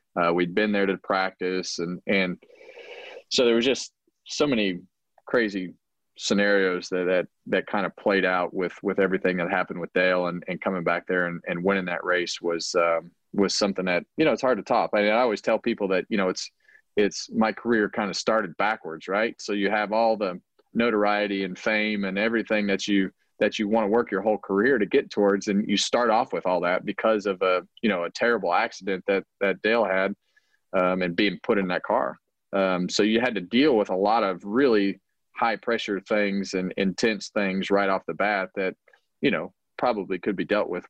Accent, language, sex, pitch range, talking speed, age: American, English, male, 90-105 Hz, 215 wpm, 30-49